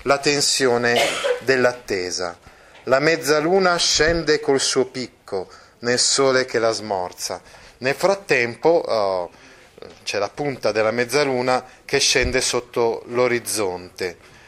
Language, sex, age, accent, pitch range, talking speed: Italian, male, 30-49, native, 115-140 Hz, 110 wpm